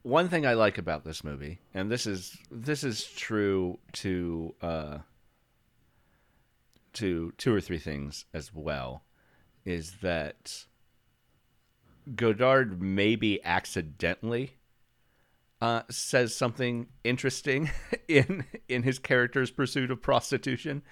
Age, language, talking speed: 40-59, English, 110 wpm